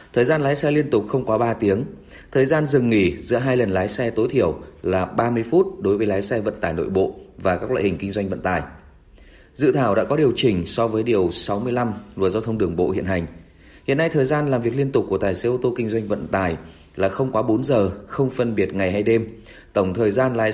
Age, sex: 20-39, male